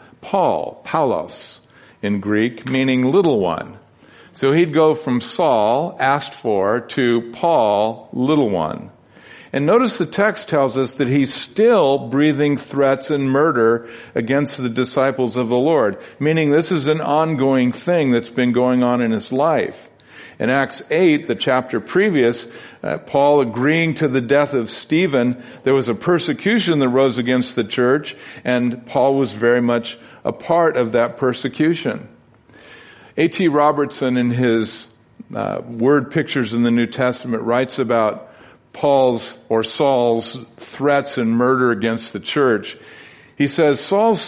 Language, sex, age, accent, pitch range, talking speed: English, male, 50-69, American, 120-150 Hz, 145 wpm